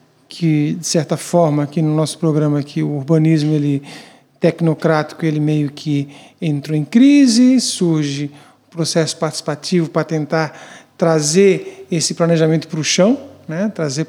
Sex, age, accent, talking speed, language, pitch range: male, 50-69, Brazilian, 140 wpm, Portuguese, 155-200 Hz